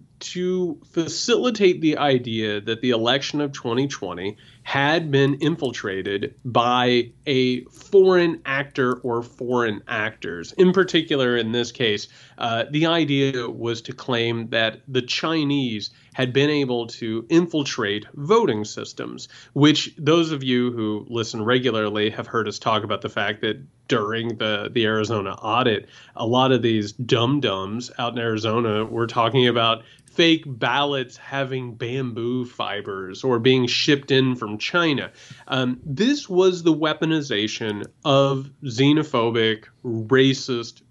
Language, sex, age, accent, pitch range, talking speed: English, male, 30-49, American, 115-145 Hz, 130 wpm